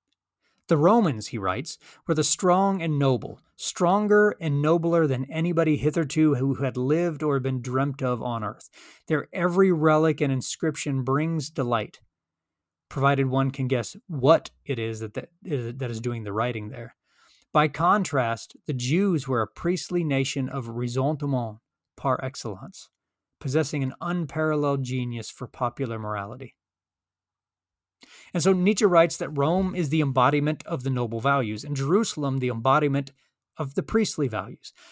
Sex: male